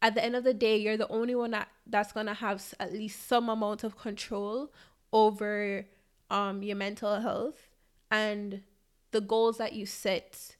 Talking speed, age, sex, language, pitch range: 185 wpm, 20-39, female, English, 205-235 Hz